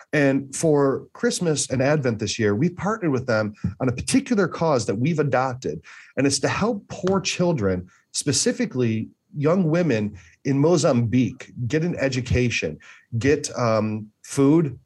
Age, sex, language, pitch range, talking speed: 40-59, male, English, 110-150 Hz, 140 wpm